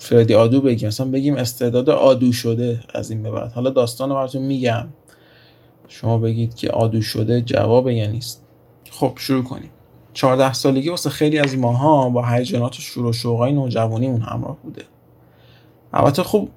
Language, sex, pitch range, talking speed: Persian, male, 120-140 Hz, 155 wpm